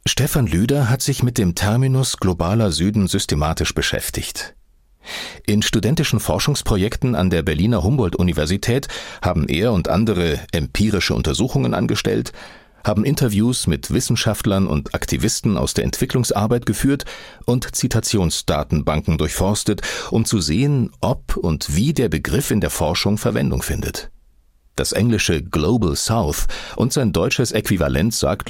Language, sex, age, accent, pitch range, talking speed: German, male, 40-59, German, 80-110 Hz, 125 wpm